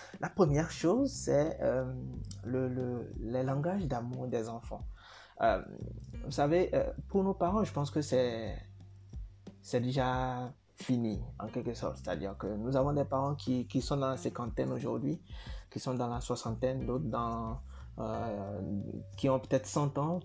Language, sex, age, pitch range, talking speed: French, male, 20-39, 100-140 Hz, 165 wpm